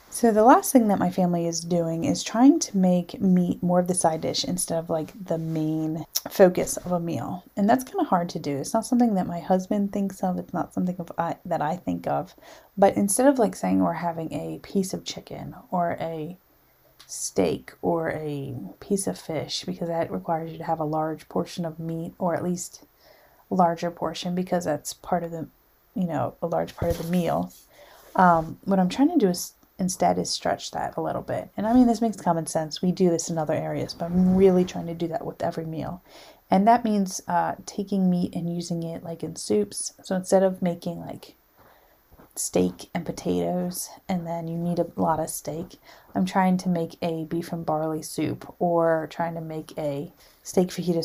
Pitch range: 165-190 Hz